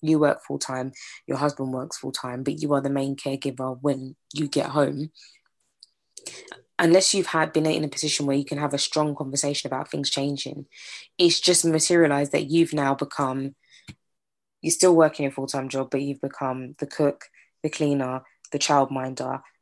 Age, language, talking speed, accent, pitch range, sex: 20-39, English, 180 wpm, British, 140-165 Hz, female